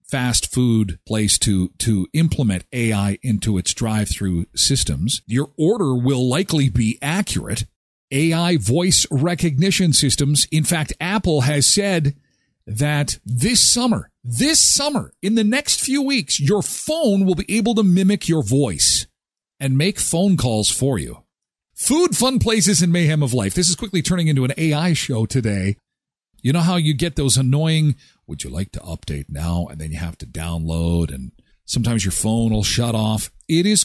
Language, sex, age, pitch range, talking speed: English, male, 40-59, 100-160 Hz, 170 wpm